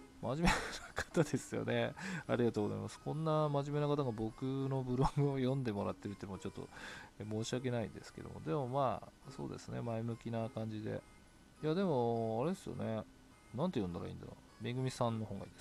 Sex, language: male, Japanese